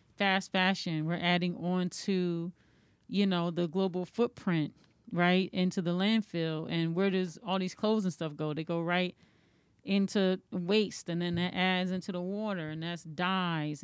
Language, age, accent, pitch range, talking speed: English, 30-49, American, 170-205 Hz, 170 wpm